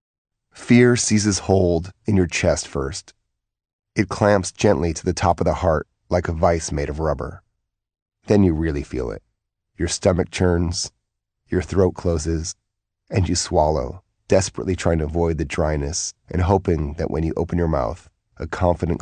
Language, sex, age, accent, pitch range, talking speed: English, male, 30-49, American, 85-105 Hz, 165 wpm